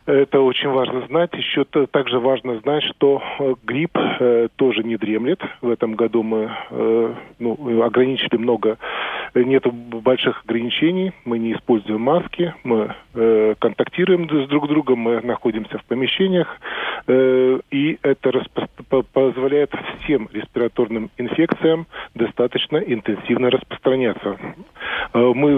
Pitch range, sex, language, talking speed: 120-140 Hz, male, Russian, 110 wpm